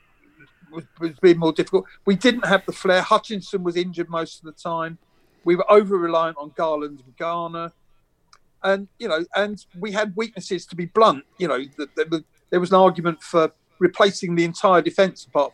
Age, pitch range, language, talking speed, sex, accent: 50-69, 170-215 Hz, English, 190 wpm, male, British